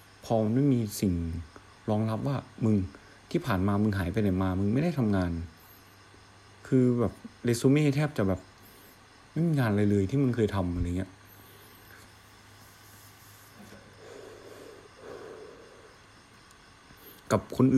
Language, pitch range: Thai, 100-135 Hz